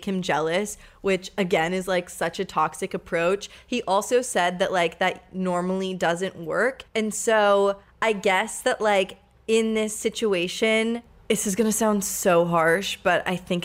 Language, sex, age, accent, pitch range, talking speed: English, female, 20-39, American, 175-215 Hz, 165 wpm